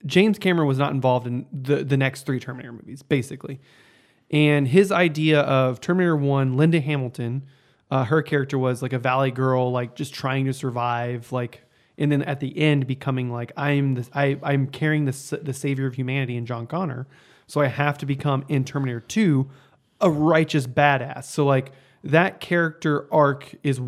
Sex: male